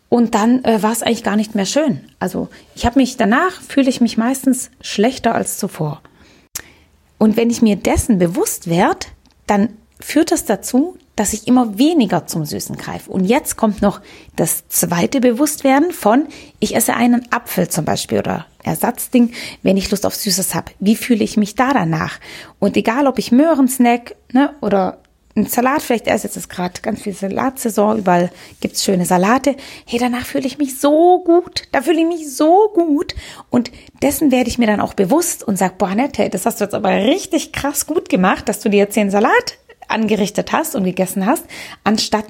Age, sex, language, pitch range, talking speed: 30-49, female, English, 210-275 Hz, 190 wpm